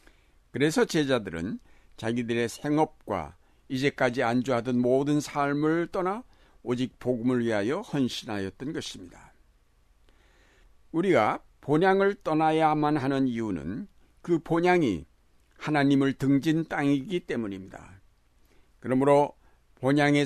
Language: Korean